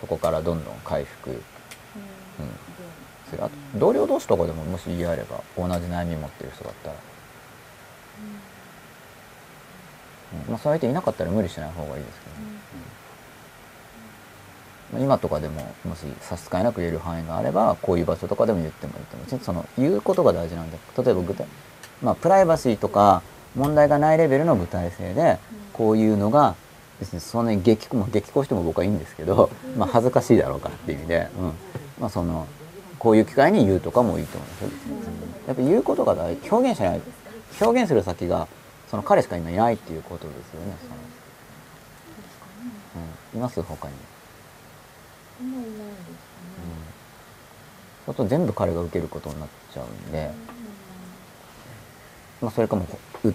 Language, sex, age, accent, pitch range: Japanese, male, 40-59, native, 85-125 Hz